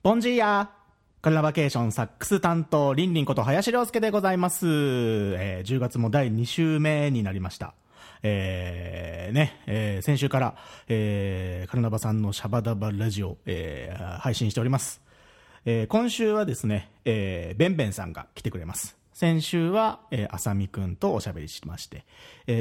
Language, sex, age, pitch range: Japanese, male, 40-59, 100-145 Hz